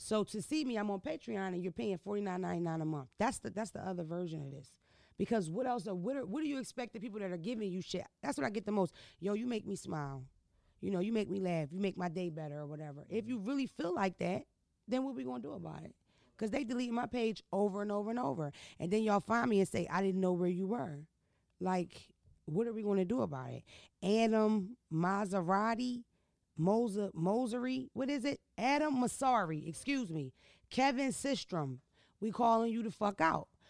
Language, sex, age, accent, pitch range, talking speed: English, female, 30-49, American, 180-255 Hz, 225 wpm